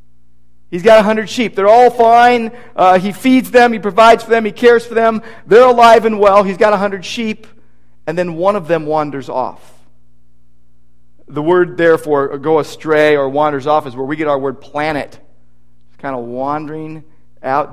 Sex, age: male, 40-59